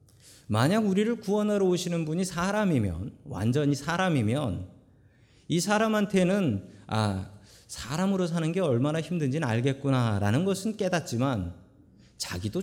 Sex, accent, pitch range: male, native, 120-190 Hz